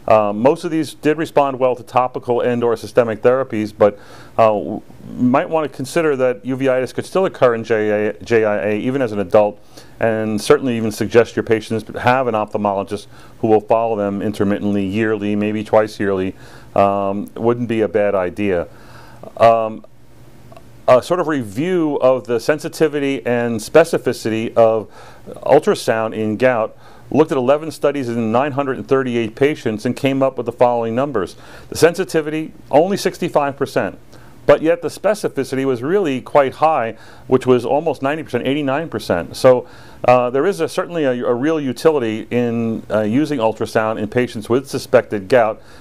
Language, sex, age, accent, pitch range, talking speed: English, male, 40-59, American, 110-140 Hz, 155 wpm